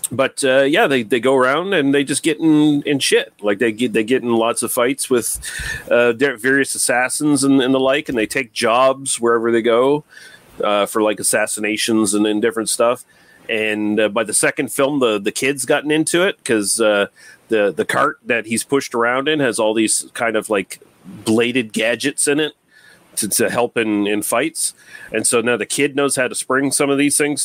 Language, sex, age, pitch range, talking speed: English, male, 40-59, 110-135 Hz, 210 wpm